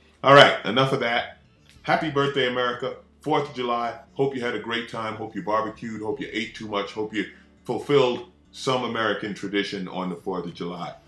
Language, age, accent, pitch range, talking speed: English, 40-59, American, 100-130 Hz, 190 wpm